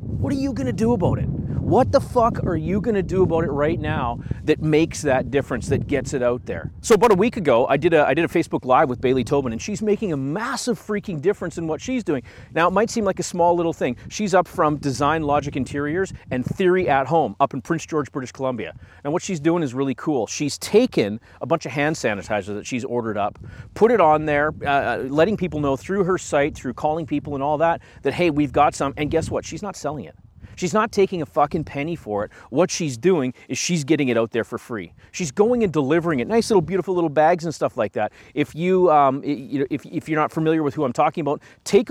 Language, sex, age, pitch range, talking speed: English, male, 40-59, 135-175 Hz, 245 wpm